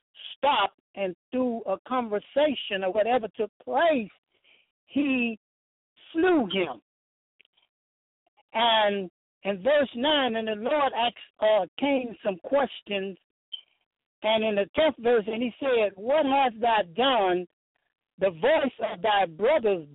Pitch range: 210-290 Hz